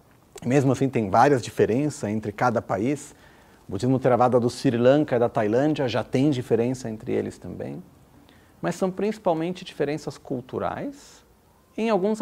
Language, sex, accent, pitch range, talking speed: Italian, male, Brazilian, 130-205 Hz, 150 wpm